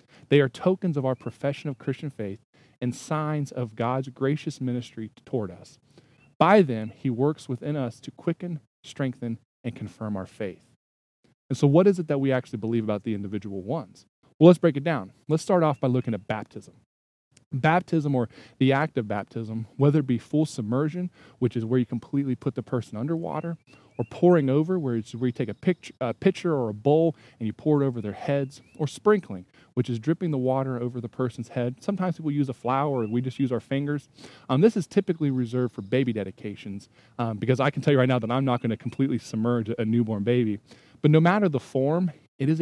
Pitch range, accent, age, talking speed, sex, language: 115-150 Hz, American, 20-39, 210 wpm, male, English